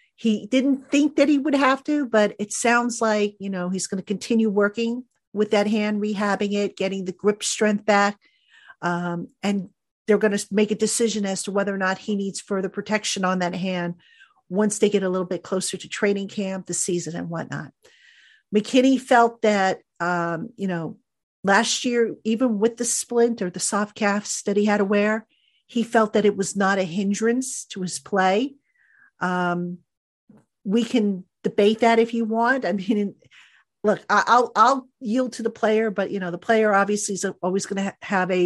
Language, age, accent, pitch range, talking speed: English, 50-69, American, 185-225 Hz, 190 wpm